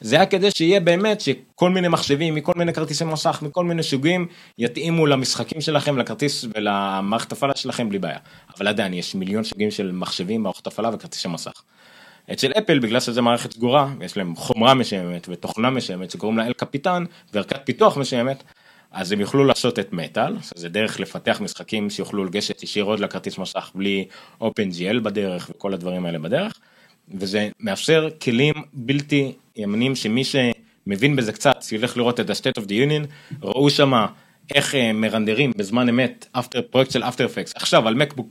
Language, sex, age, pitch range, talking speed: Hebrew, male, 30-49, 110-155 Hz, 155 wpm